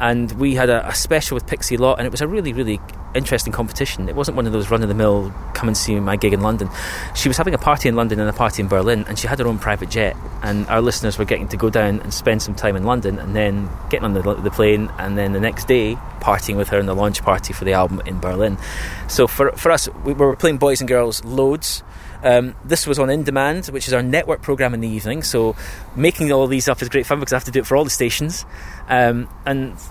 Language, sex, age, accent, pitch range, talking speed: English, male, 20-39, British, 105-135 Hz, 265 wpm